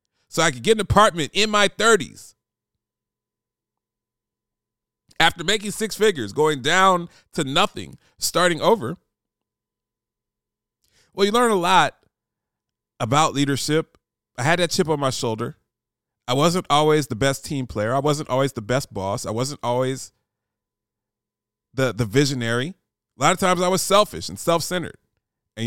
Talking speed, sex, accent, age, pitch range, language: 145 wpm, male, American, 30-49, 110-165 Hz, English